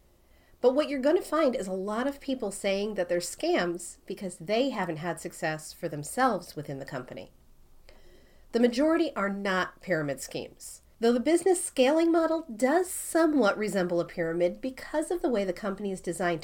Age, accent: 40-59, American